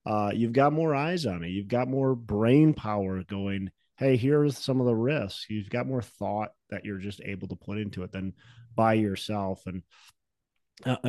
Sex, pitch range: male, 95-120 Hz